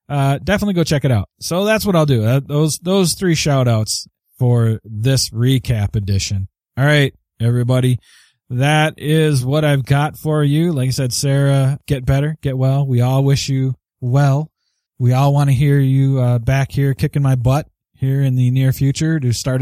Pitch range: 120-150 Hz